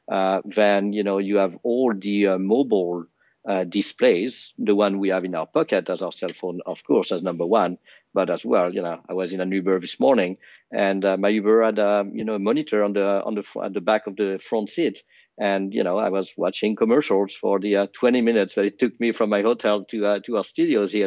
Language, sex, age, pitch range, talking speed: English, male, 50-69, 95-105 Hz, 250 wpm